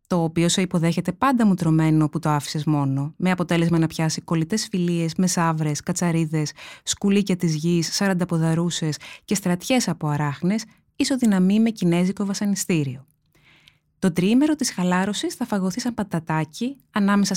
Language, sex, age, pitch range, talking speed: Greek, female, 20-39, 165-220 Hz, 140 wpm